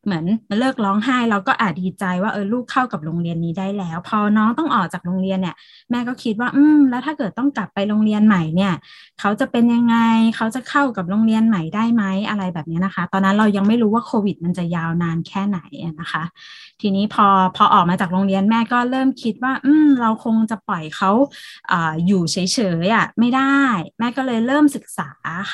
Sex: female